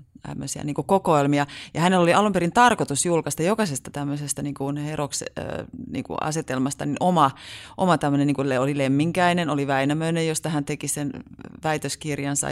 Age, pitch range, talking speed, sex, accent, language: 30-49, 135-150 Hz, 135 wpm, female, native, Finnish